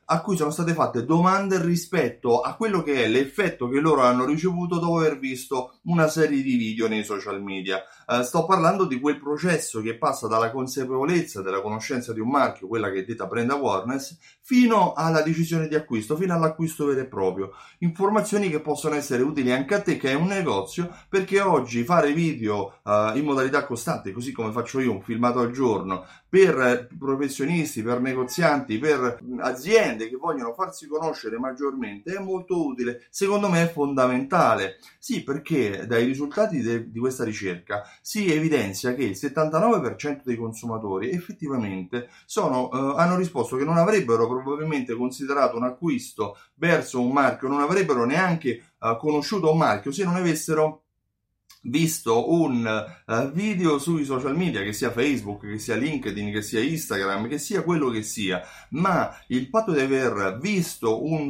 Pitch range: 120-165 Hz